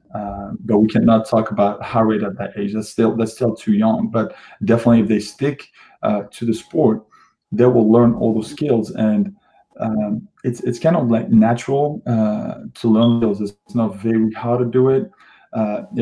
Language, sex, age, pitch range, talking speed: English, male, 20-39, 110-125 Hz, 195 wpm